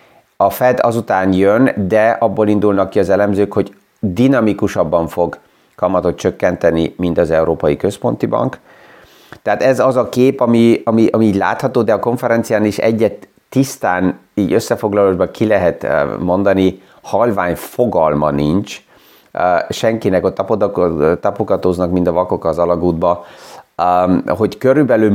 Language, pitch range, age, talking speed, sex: Hungarian, 85-110 Hz, 30-49, 130 wpm, male